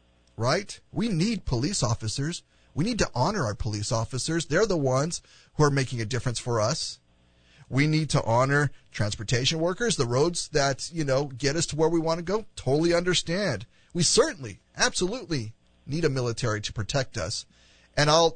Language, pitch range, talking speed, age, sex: English, 105-155 Hz, 175 wpm, 30-49, male